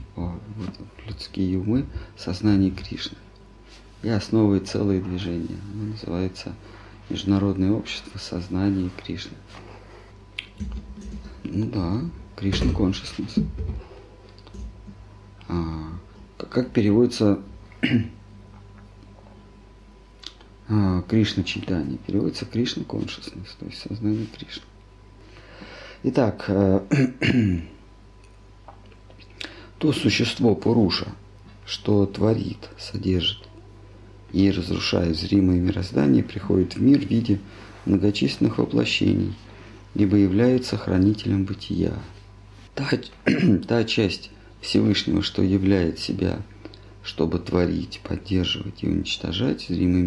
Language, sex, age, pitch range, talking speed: Russian, male, 40-59, 95-105 Hz, 75 wpm